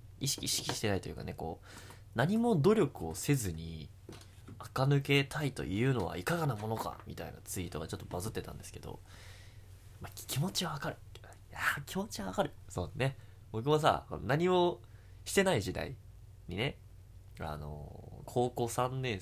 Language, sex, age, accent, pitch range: Japanese, male, 20-39, native, 95-135 Hz